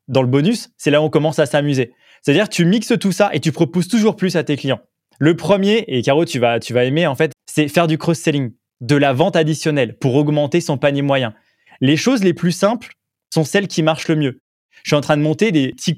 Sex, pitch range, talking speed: male, 140-185 Hz, 250 wpm